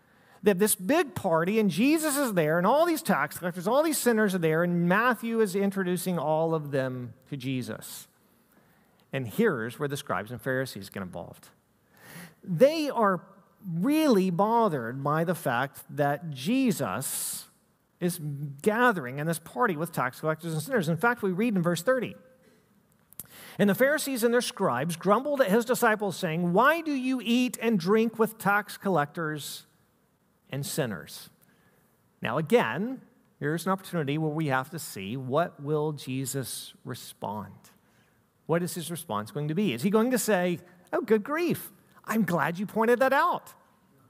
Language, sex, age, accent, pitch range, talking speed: English, male, 50-69, American, 150-220 Hz, 165 wpm